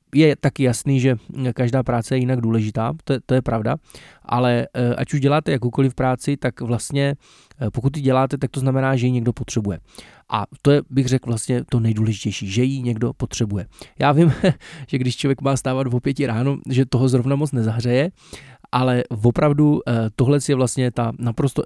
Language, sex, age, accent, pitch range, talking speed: Czech, male, 20-39, native, 115-135 Hz, 185 wpm